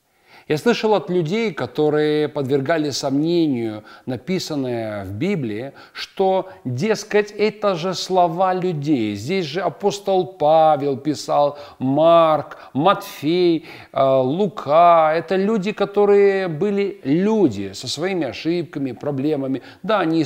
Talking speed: 105 wpm